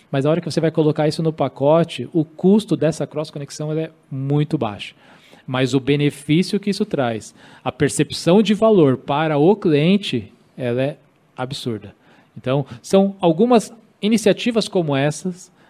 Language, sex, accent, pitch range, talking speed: Portuguese, male, Brazilian, 130-170 Hz, 150 wpm